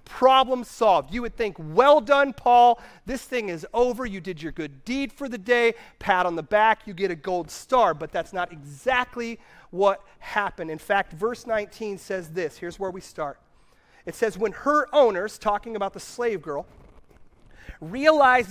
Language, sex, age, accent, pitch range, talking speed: English, male, 30-49, American, 185-250 Hz, 180 wpm